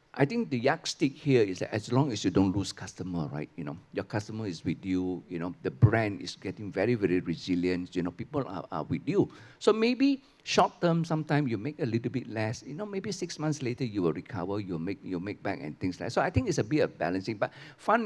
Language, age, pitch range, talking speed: English, 50-69, 100-160 Hz, 260 wpm